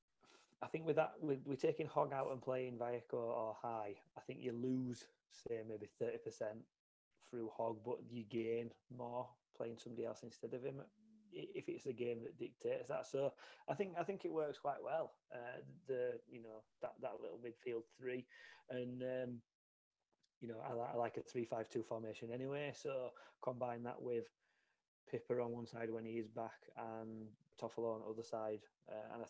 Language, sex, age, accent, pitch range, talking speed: English, male, 30-49, British, 115-145 Hz, 190 wpm